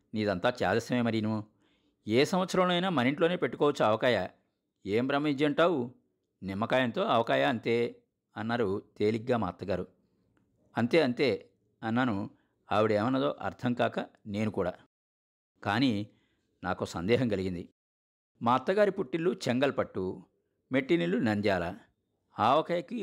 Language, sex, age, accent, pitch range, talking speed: Telugu, male, 50-69, native, 105-140 Hz, 100 wpm